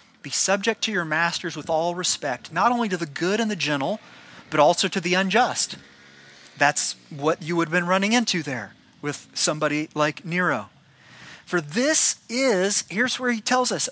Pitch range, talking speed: 160-225 Hz, 180 wpm